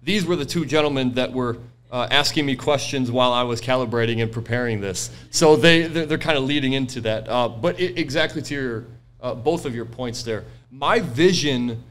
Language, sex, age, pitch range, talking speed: English, male, 30-49, 120-140 Hz, 205 wpm